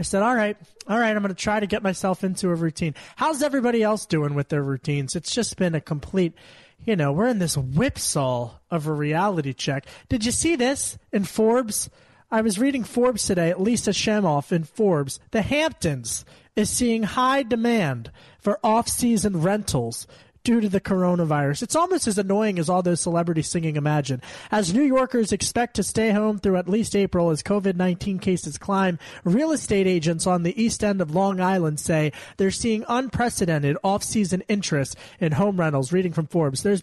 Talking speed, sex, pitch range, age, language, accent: 185 wpm, male, 165-215 Hz, 30-49, English, American